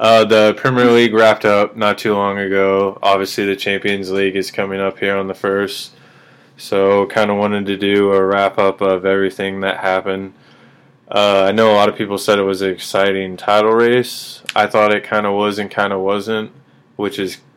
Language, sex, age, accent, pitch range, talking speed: English, male, 20-39, American, 95-105 Hz, 200 wpm